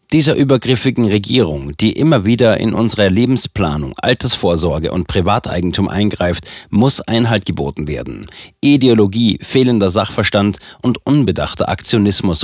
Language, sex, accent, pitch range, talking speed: German, male, German, 100-125 Hz, 110 wpm